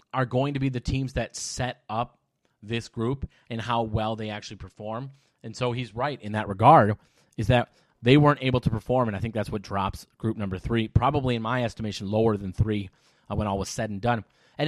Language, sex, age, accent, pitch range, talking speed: English, male, 30-49, American, 110-140 Hz, 225 wpm